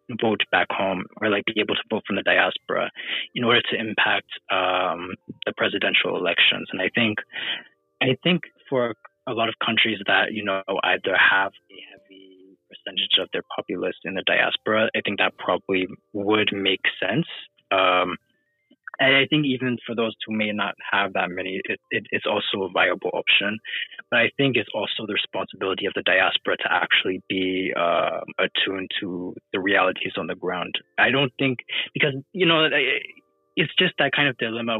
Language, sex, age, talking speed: Swahili, male, 20-39, 180 wpm